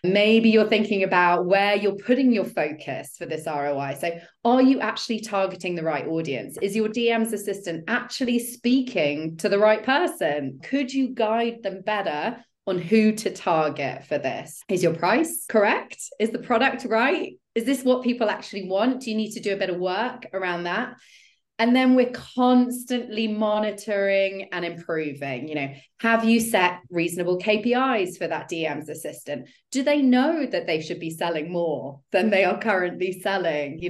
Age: 30-49